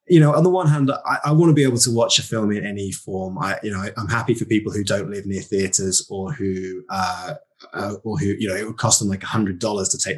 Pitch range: 100-125 Hz